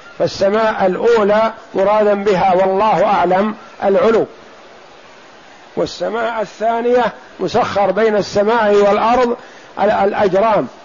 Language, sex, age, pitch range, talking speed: Arabic, male, 50-69, 180-215 Hz, 75 wpm